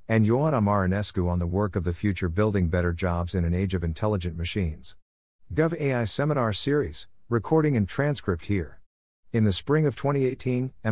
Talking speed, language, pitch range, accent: 170 wpm, English, 90-115 Hz, American